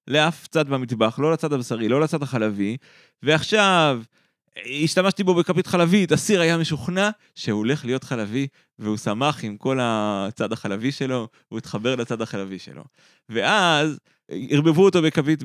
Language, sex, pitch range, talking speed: Hebrew, male, 120-190 Hz, 145 wpm